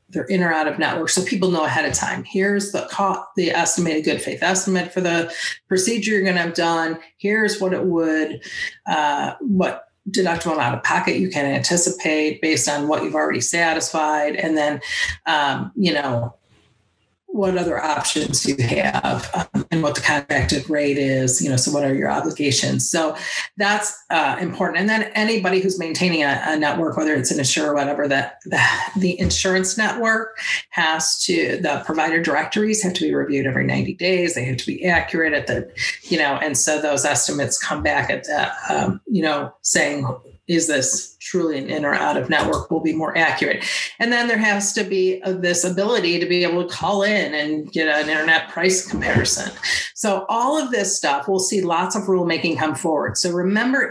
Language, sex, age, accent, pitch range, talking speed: English, female, 40-59, American, 155-195 Hz, 195 wpm